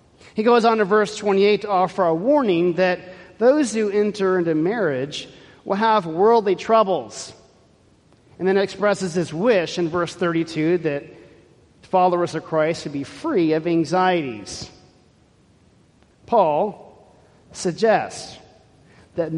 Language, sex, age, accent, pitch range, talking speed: English, male, 40-59, American, 165-210 Hz, 125 wpm